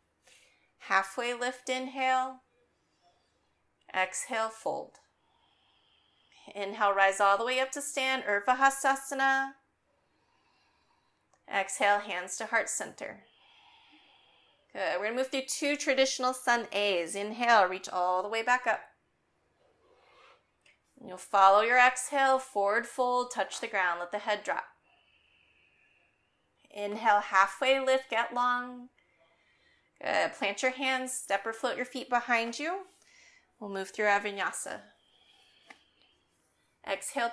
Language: English